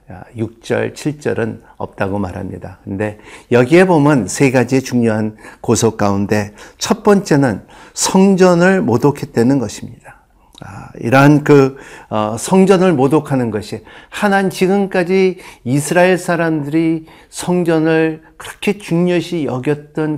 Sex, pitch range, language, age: male, 125-175 Hz, Korean, 50-69